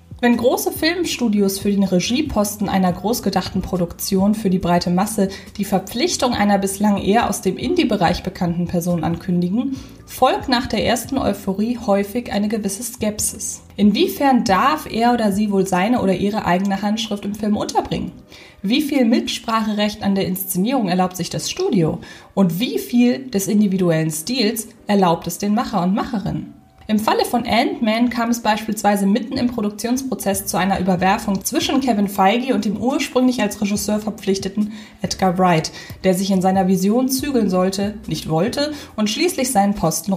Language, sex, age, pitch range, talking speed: German, female, 20-39, 190-245 Hz, 160 wpm